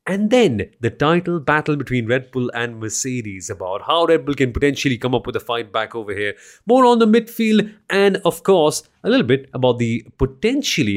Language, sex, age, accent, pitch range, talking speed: English, male, 30-49, Indian, 115-175 Hz, 200 wpm